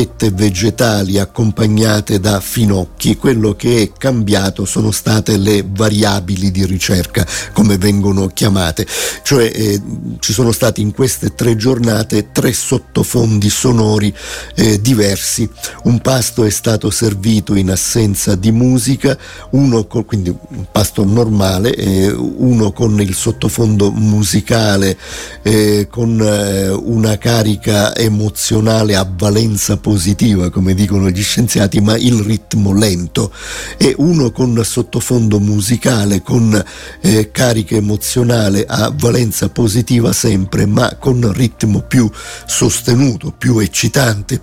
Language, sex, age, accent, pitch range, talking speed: Italian, male, 50-69, native, 100-120 Hz, 120 wpm